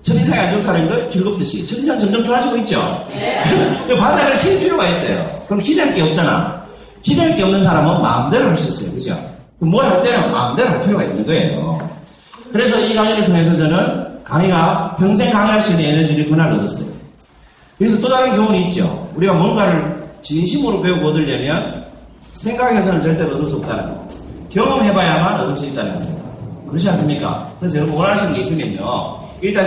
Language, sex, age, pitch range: Korean, male, 40-59, 165-215 Hz